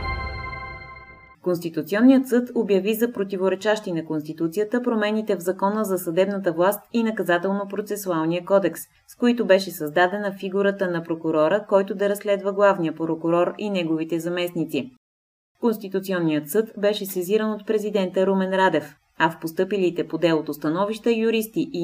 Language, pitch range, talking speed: Bulgarian, 160-210 Hz, 130 wpm